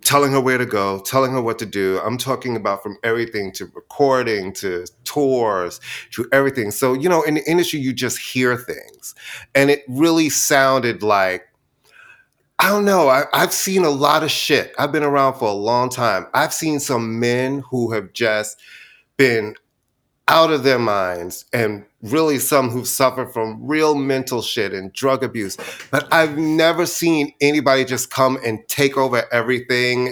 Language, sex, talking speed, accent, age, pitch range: English, male, 175 wpm, American, 30-49, 115-145 Hz